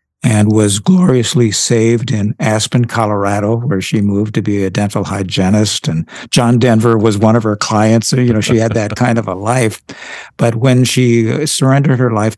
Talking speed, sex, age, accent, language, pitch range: 190 wpm, male, 60-79, American, English, 110-130 Hz